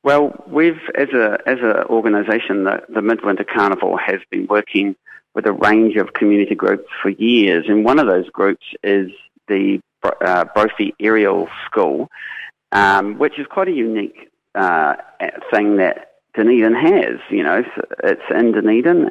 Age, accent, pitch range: 40-59, Australian, 100-130 Hz